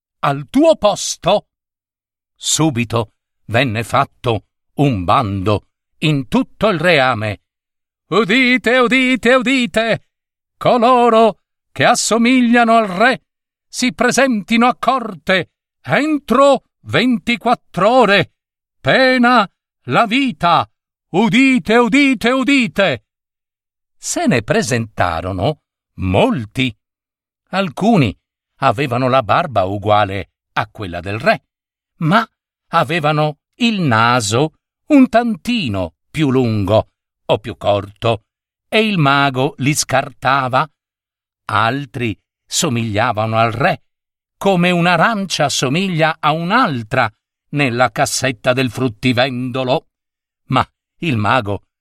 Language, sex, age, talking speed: Italian, male, 50-69, 90 wpm